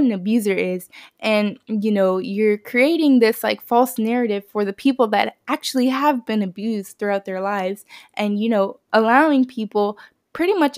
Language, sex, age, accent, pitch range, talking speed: English, female, 10-29, American, 205-245 Hz, 165 wpm